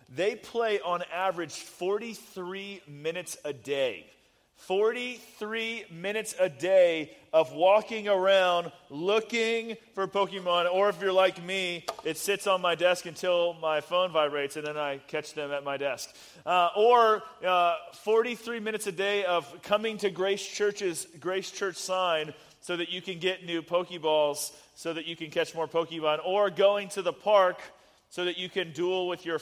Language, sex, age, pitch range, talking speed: English, male, 30-49, 170-215 Hz, 165 wpm